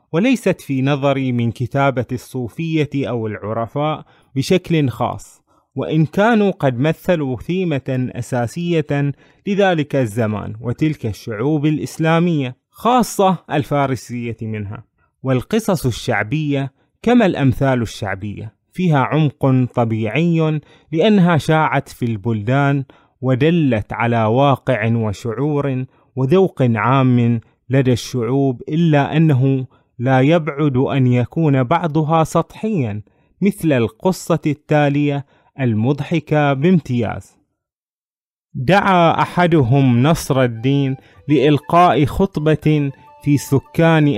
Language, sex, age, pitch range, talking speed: Arabic, male, 30-49, 125-165 Hz, 90 wpm